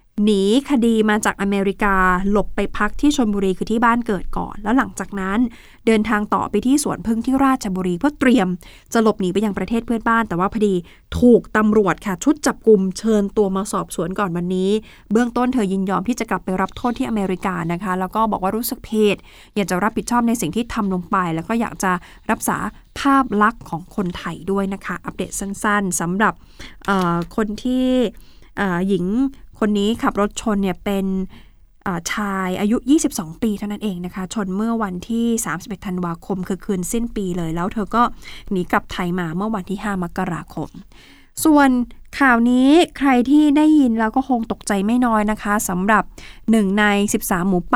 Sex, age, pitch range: female, 20-39, 190-230 Hz